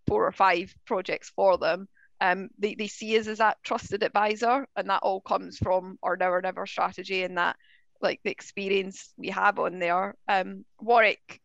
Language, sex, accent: English, female, British